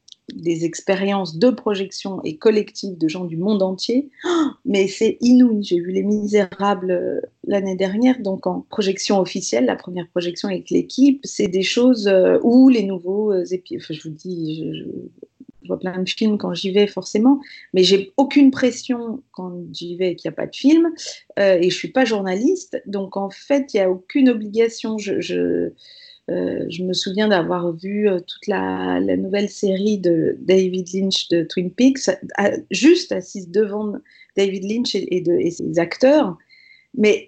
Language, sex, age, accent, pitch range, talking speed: French, female, 40-59, French, 185-250 Hz, 185 wpm